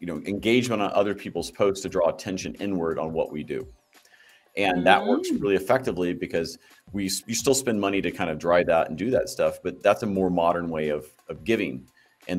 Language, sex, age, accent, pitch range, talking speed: English, male, 40-59, American, 85-100 Hz, 220 wpm